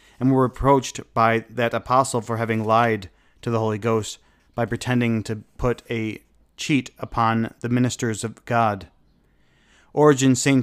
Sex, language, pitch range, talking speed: male, English, 110-125 Hz, 145 wpm